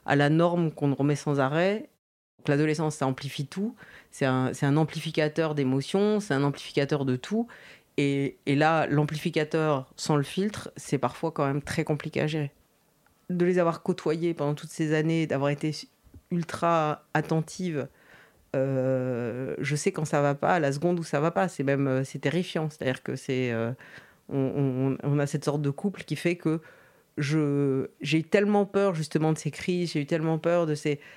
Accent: French